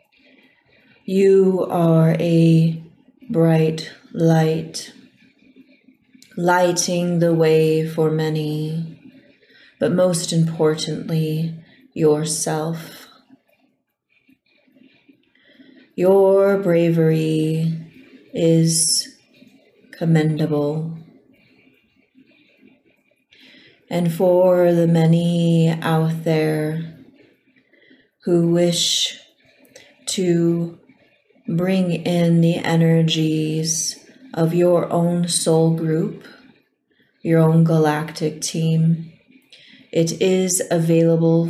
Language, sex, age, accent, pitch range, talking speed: English, female, 30-49, American, 160-250 Hz, 60 wpm